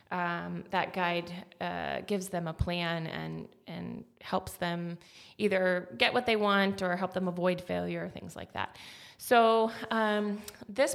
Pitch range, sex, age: 185-225 Hz, female, 20-39